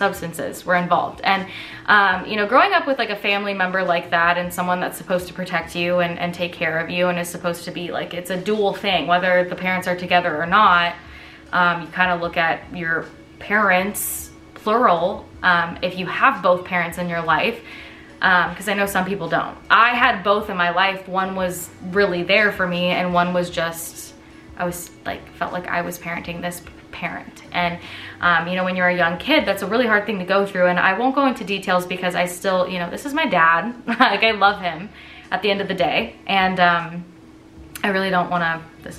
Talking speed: 225 wpm